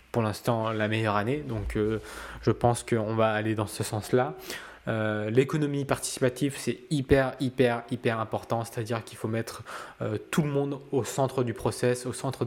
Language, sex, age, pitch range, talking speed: French, male, 20-39, 110-125 Hz, 175 wpm